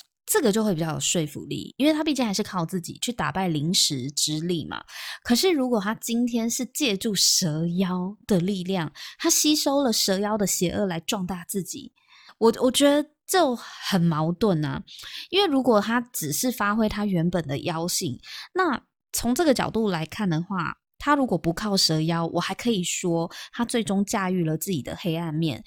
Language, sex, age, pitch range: Chinese, female, 20-39, 170-235 Hz